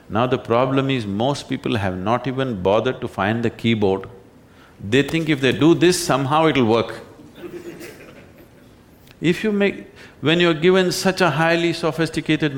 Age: 50-69